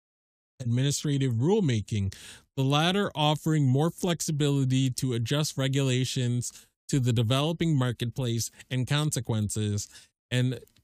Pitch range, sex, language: 120-150 Hz, male, English